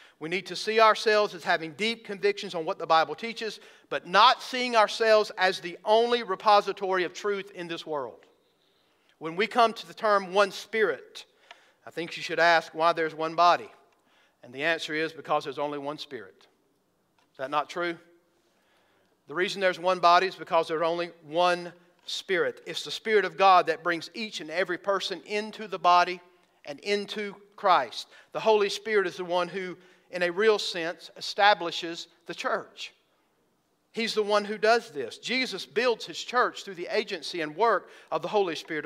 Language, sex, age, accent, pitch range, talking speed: English, male, 50-69, American, 170-220 Hz, 180 wpm